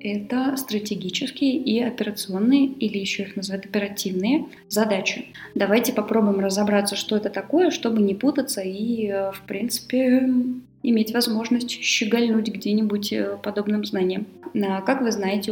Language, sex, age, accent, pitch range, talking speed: Russian, female, 20-39, native, 205-245 Hz, 120 wpm